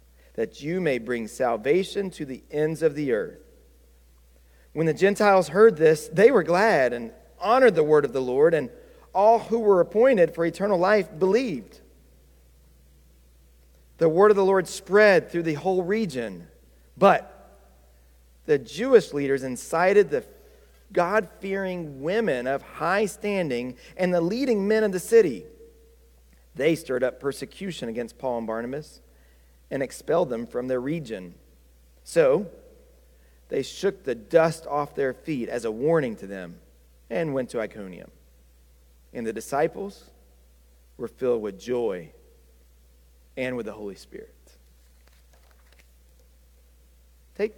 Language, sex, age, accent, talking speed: English, male, 40-59, American, 135 wpm